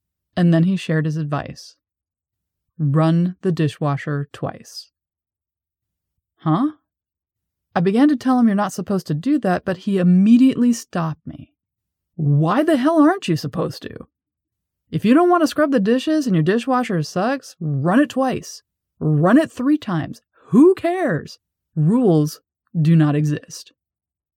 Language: English